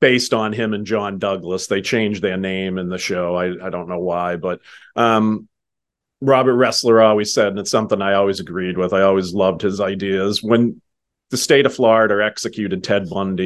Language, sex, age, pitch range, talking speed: English, male, 40-59, 95-110 Hz, 195 wpm